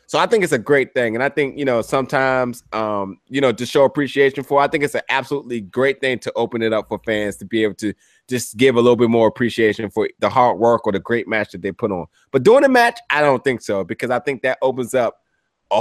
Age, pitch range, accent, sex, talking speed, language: 20-39, 115-155 Hz, American, male, 270 wpm, English